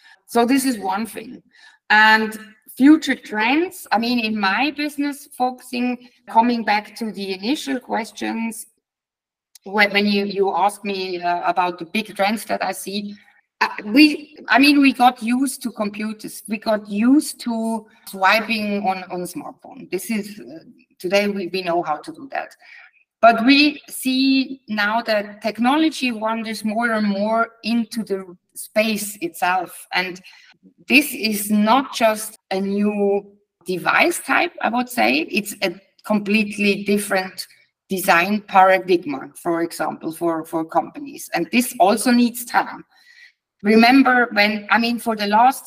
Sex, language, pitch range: female, English, 195-250 Hz